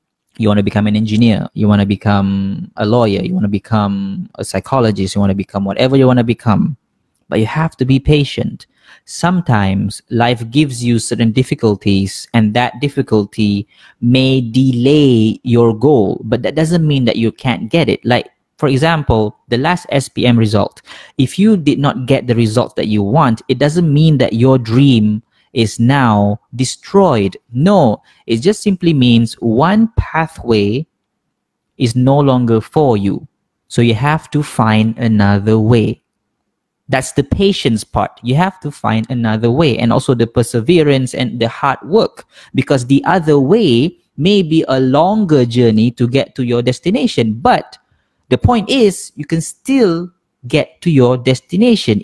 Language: Malay